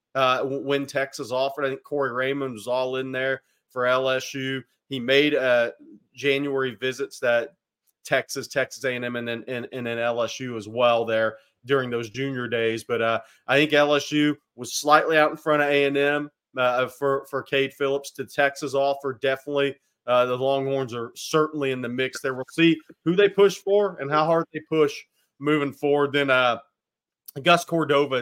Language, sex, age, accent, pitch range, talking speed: English, male, 30-49, American, 125-145 Hz, 175 wpm